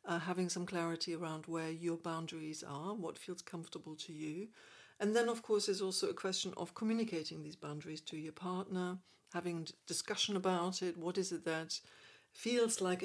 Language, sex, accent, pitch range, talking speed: English, female, British, 165-195 Hz, 180 wpm